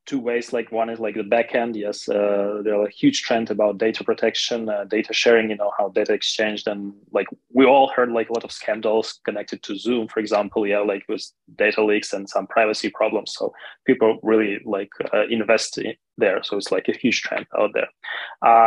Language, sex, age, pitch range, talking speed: English, male, 20-39, 110-130 Hz, 220 wpm